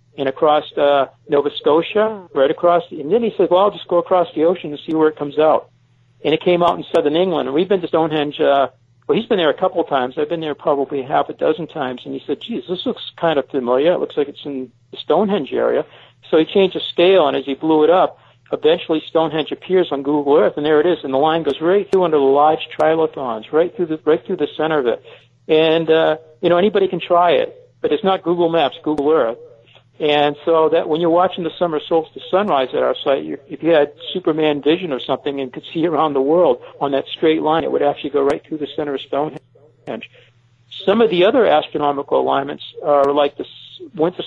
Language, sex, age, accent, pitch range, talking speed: English, male, 50-69, American, 140-175 Hz, 240 wpm